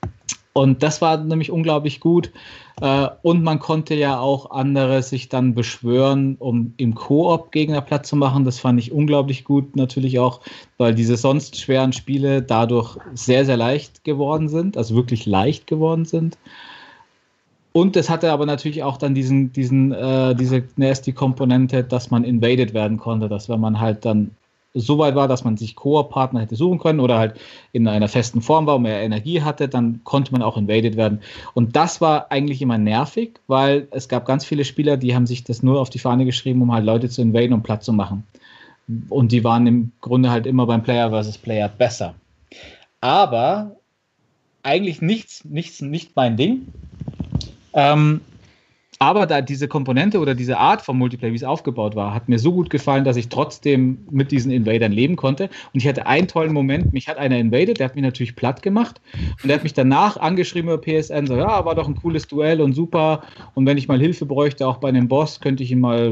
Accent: German